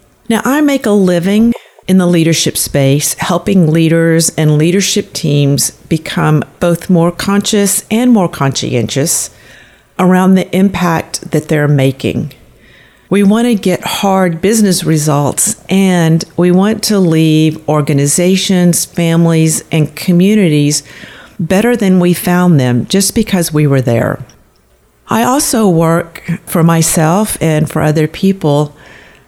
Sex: female